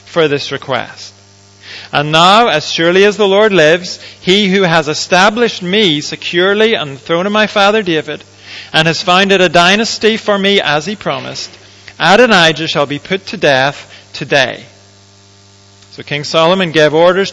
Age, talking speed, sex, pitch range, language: 40-59, 160 wpm, male, 130-180 Hz, Dutch